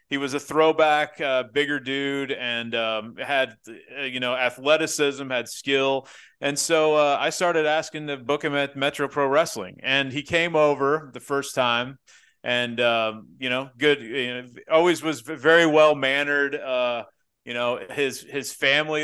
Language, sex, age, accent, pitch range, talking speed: English, male, 30-49, American, 125-150 Hz, 170 wpm